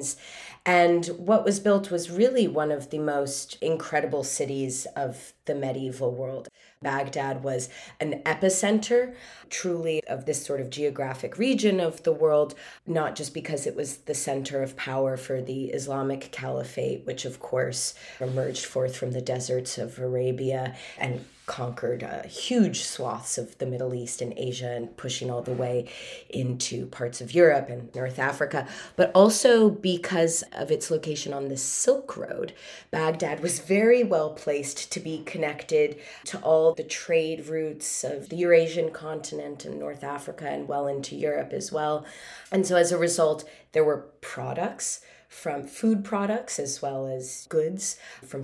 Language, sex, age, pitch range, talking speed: English, female, 30-49, 135-175 Hz, 160 wpm